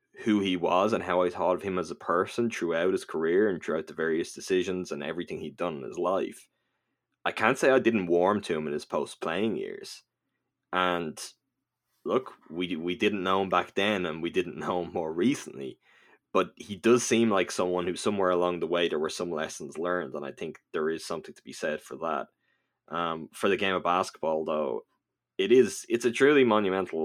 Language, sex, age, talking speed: English, male, 20-39, 210 wpm